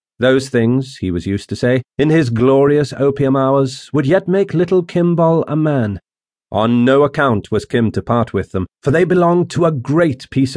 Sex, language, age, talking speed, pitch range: male, English, 40-59, 200 wpm, 100-135 Hz